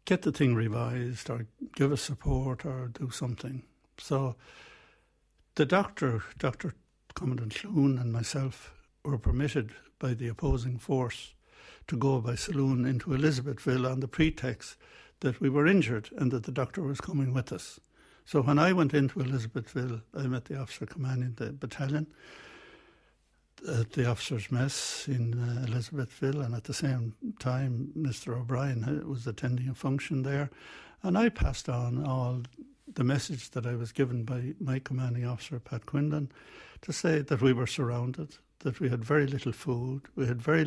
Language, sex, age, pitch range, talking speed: English, male, 60-79, 125-150 Hz, 160 wpm